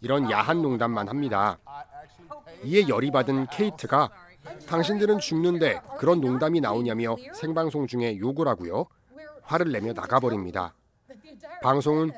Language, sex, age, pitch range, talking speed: English, male, 40-59, 120-180 Hz, 110 wpm